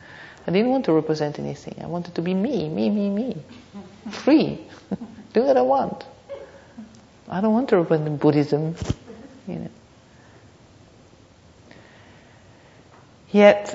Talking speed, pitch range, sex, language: 115 wpm, 150-180 Hz, female, English